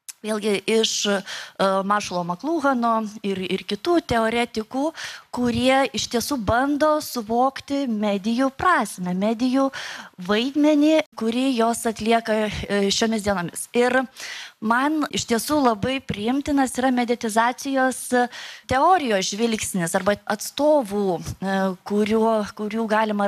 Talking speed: 95 wpm